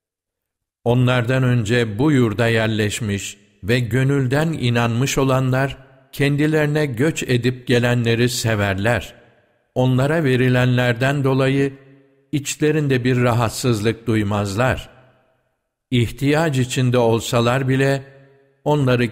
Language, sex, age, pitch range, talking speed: Turkish, male, 60-79, 110-135 Hz, 80 wpm